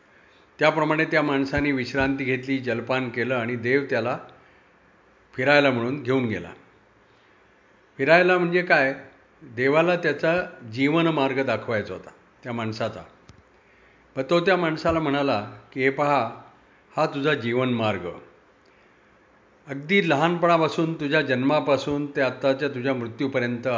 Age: 50-69